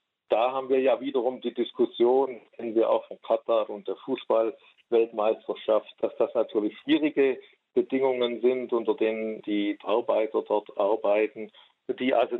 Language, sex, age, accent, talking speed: German, male, 50-69, German, 140 wpm